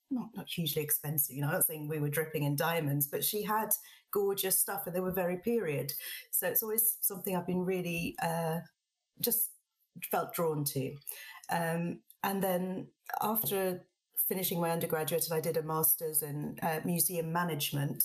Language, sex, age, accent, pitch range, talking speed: English, female, 40-59, British, 155-190 Hz, 170 wpm